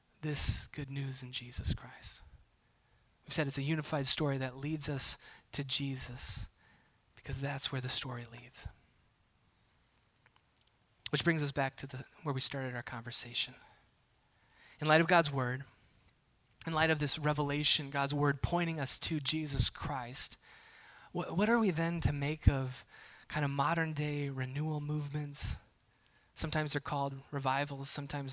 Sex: male